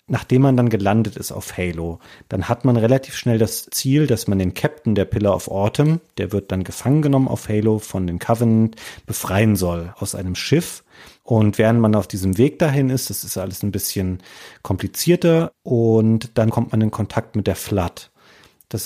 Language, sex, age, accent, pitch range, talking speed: German, male, 40-59, German, 105-125 Hz, 195 wpm